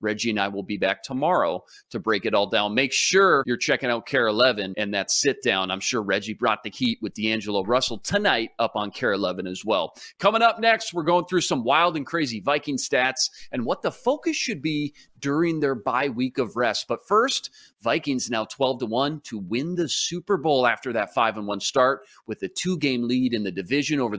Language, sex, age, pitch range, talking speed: English, male, 30-49, 110-150 Hz, 210 wpm